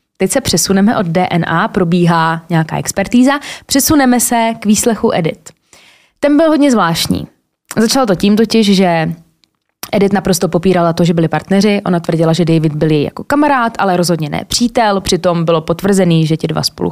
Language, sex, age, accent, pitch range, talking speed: Czech, female, 20-39, native, 175-220 Hz, 170 wpm